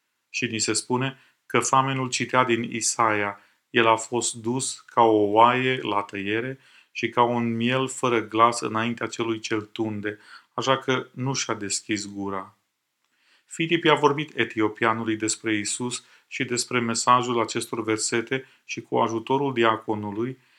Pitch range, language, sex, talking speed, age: 110-130 Hz, Romanian, male, 140 wpm, 30-49